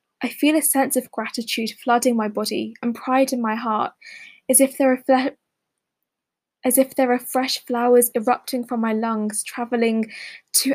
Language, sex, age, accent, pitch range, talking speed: English, female, 10-29, British, 225-260 Hz, 175 wpm